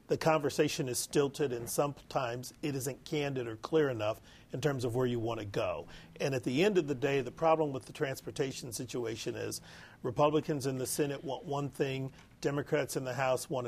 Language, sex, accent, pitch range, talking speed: English, male, American, 125-155 Hz, 200 wpm